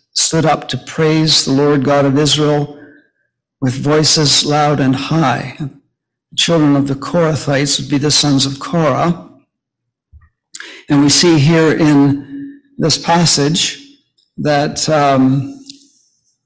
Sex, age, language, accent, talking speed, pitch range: male, 60-79, English, American, 125 wpm, 140-155 Hz